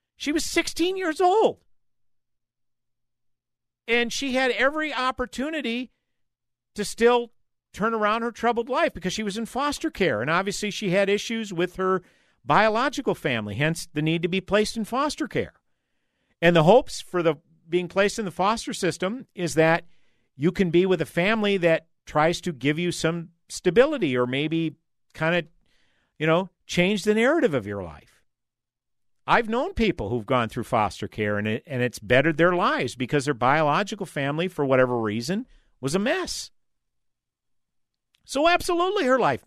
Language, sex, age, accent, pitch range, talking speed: English, male, 50-69, American, 150-225 Hz, 165 wpm